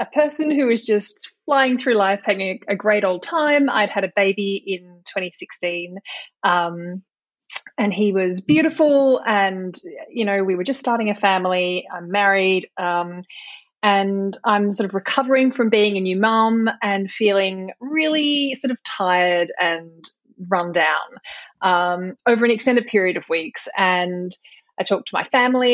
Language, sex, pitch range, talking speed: English, female, 190-240 Hz, 160 wpm